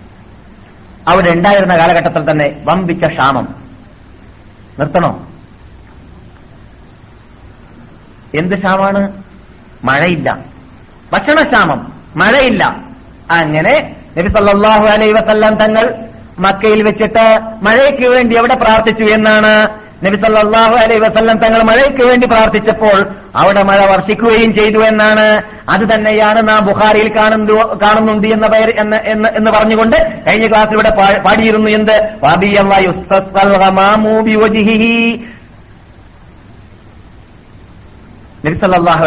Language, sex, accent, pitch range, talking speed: Malayalam, male, native, 170-220 Hz, 75 wpm